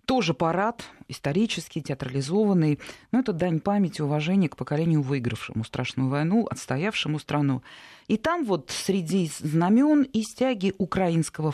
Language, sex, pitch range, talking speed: Russian, female, 140-205 Hz, 125 wpm